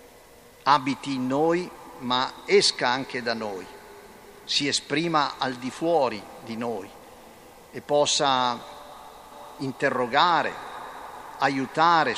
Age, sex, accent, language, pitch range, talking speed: 50-69, male, native, Italian, 130-165 Hz, 95 wpm